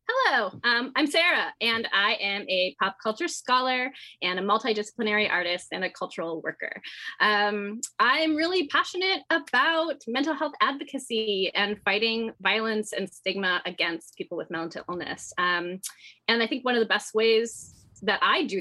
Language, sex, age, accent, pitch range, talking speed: English, female, 20-39, American, 180-245 Hz, 160 wpm